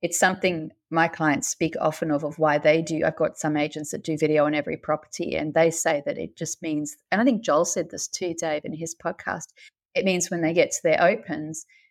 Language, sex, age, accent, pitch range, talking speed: English, female, 30-49, Australian, 150-180 Hz, 235 wpm